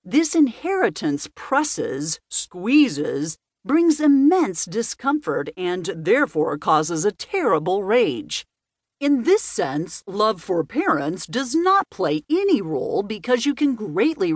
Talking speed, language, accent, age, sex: 115 wpm, English, American, 50-69, female